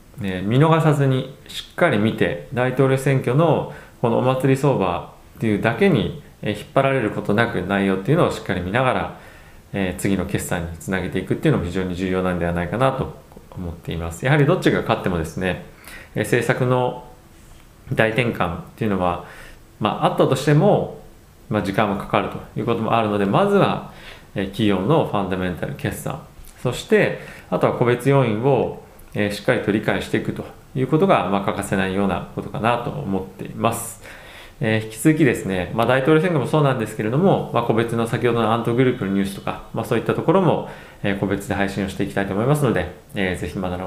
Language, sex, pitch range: Japanese, male, 95-135 Hz